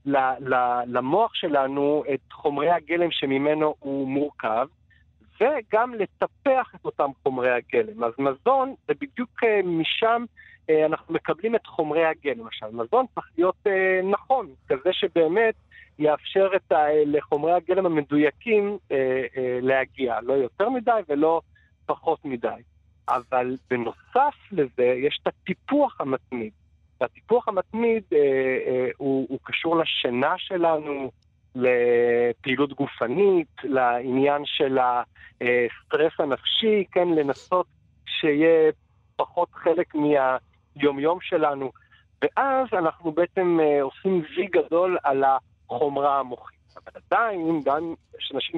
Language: Hebrew